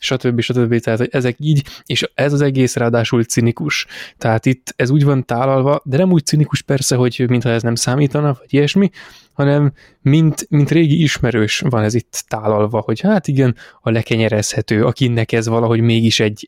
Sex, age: male, 20-39